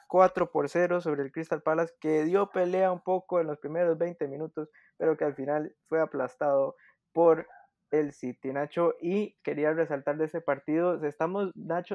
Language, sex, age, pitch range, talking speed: Spanish, male, 20-39, 155-185 Hz, 175 wpm